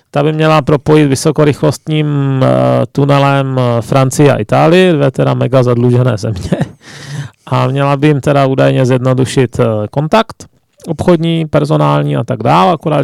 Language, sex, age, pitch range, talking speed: Czech, male, 30-49, 125-145 Hz, 130 wpm